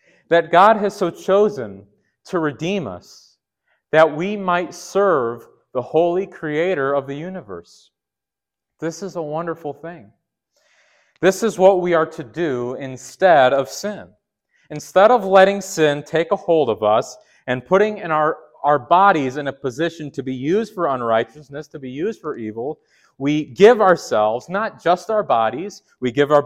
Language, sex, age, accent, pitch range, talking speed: English, male, 30-49, American, 145-200 Hz, 160 wpm